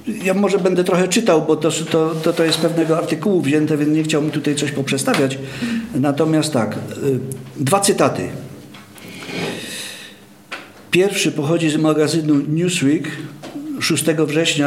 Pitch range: 135-165 Hz